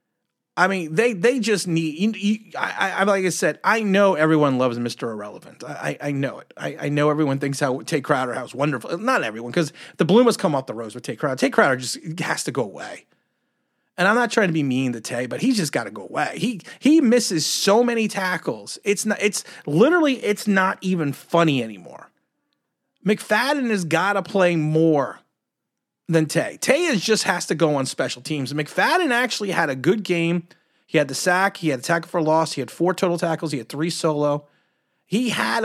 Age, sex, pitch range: 30-49, male, 160-215 Hz